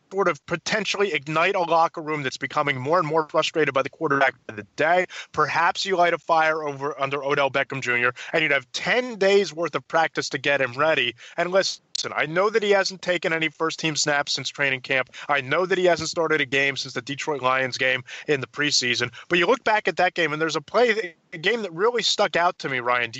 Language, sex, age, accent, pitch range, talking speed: English, male, 30-49, American, 145-190 Hz, 235 wpm